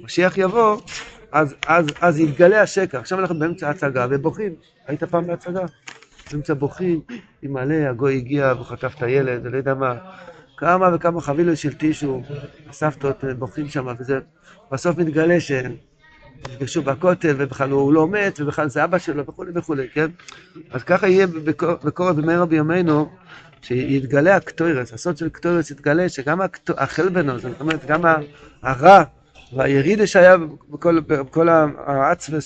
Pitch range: 145-180 Hz